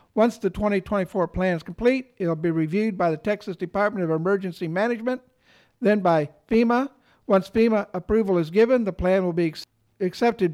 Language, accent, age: English, American, 60-79